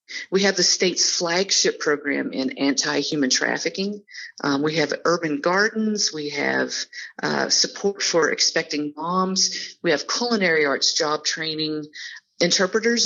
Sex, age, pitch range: female, 40-59, 155-210 Hz